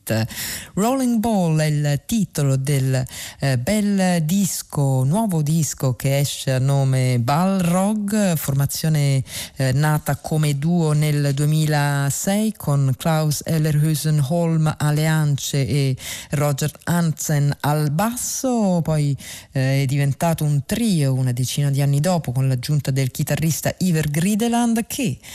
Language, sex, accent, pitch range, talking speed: Italian, female, native, 140-175 Hz, 125 wpm